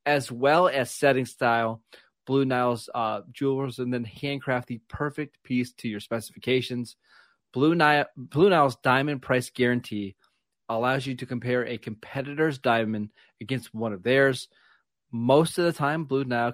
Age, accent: 30-49, American